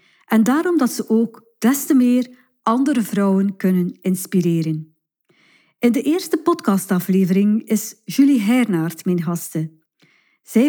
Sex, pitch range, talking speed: female, 185-235 Hz, 125 wpm